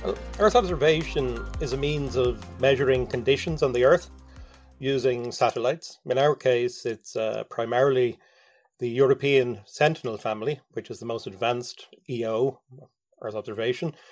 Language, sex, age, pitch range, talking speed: English, male, 30-49, 120-150 Hz, 130 wpm